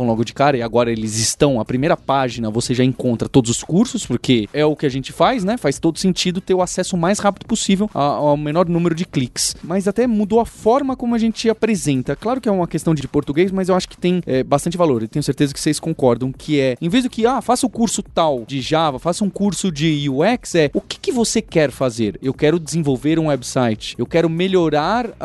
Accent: Brazilian